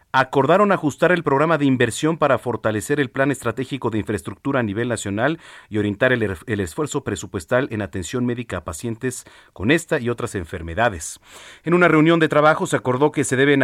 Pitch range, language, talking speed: 100-140 Hz, Spanish, 185 wpm